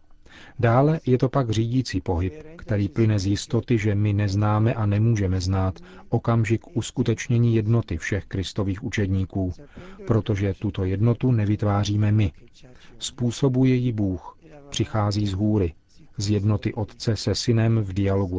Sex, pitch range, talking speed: male, 100-120 Hz, 130 wpm